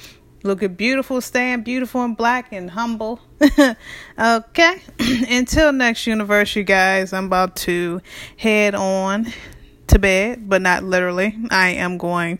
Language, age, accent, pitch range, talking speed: English, 20-39, American, 180-220 Hz, 135 wpm